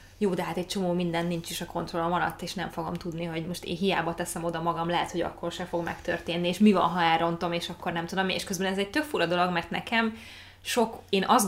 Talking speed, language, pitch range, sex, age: 255 wpm, Hungarian, 170-195 Hz, female, 20-39